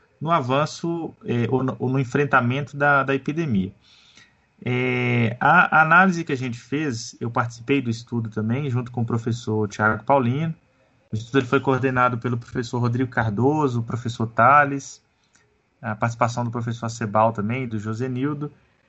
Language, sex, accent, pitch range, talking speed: Portuguese, male, Brazilian, 120-150 Hz, 160 wpm